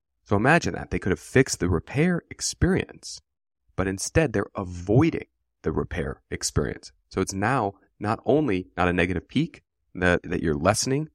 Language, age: English, 30-49